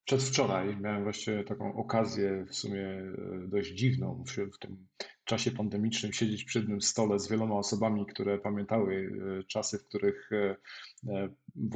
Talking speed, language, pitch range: 140 wpm, Polish, 105-135 Hz